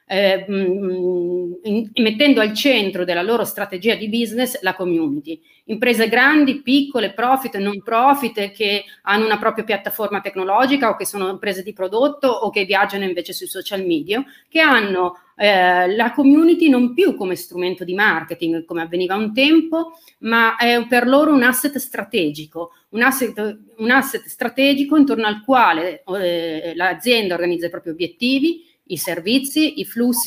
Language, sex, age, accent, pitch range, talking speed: Italian, female, 30-49, native, 185-245 Hz, 155 wpm